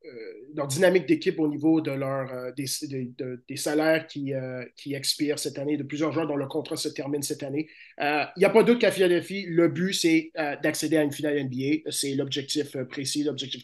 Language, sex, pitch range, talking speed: French, male, 145-180 Hz, 235 wpm